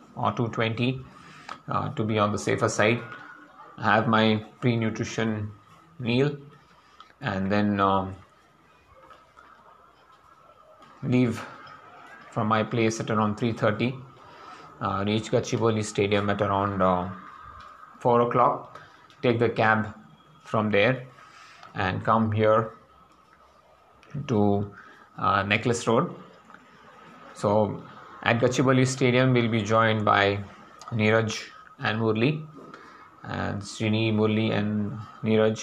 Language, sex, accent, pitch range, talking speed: English, male, Indian, 105-125 Hz, 100 wpm